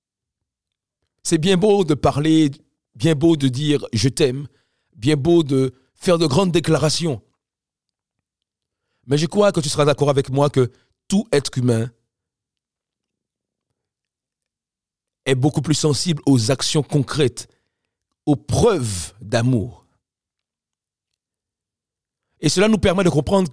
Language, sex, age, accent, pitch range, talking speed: French, male, 50-69, French, 115-165 Hz, 125 wpm